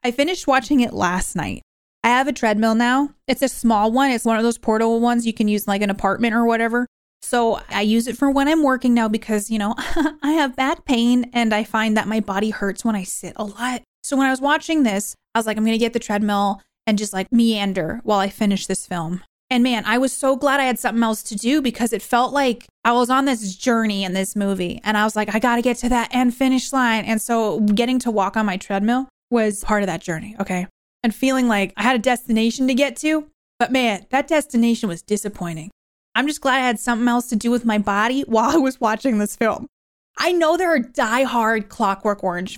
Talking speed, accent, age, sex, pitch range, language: 245 wpm, American, 20-39, female, 215-265 Hz, English